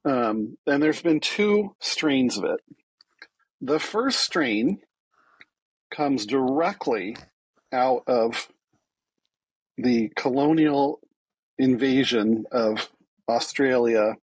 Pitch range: 120-155 Hz